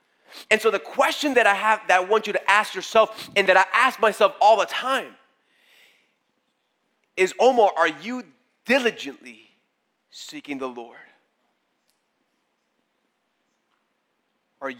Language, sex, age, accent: English, male, 30-49, American